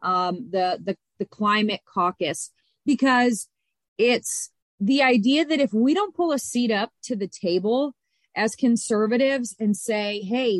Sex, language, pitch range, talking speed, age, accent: female, English, 190-240 Hz, 145 wpm, 30-49, American